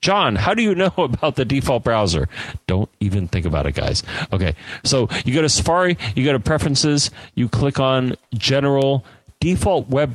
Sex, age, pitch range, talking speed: male, 40-59, 100-130 Hz, 185 wpm